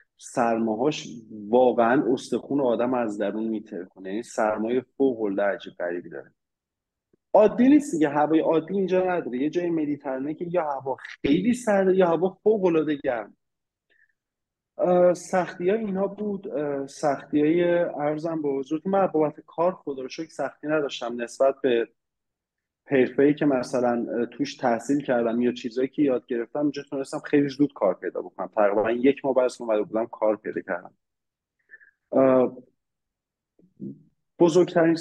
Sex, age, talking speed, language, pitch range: male, 30-49, 135 wpm, Persian, 125-170 Hz